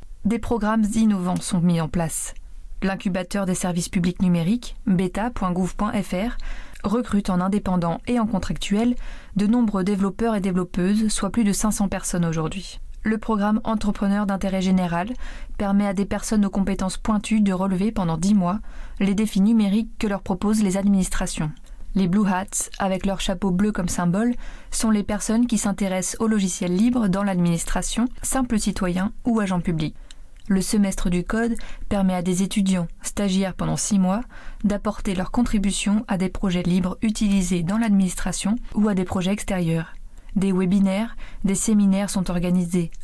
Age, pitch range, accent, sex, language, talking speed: 20-39, 185-215 Hz, French, female, French, 155 wpm